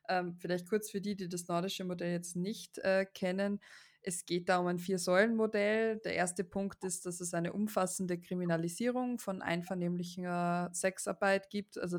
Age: 20-39